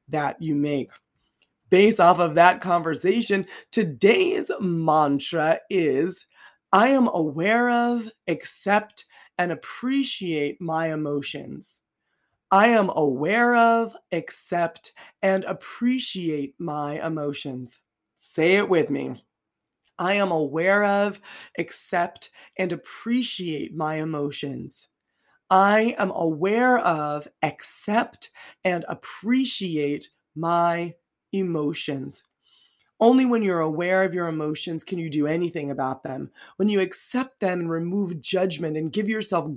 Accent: American